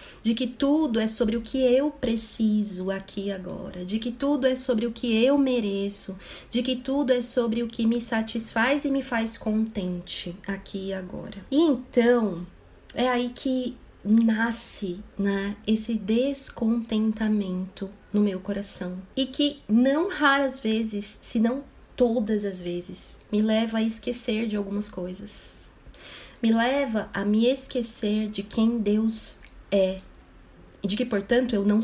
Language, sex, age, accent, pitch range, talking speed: Portuguese, female, 30-49, Brazilian, 200-250 Hz, 155 wpm